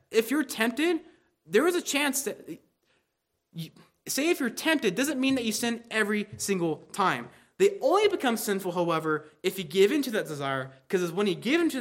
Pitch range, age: 170-245 Hz, 20-39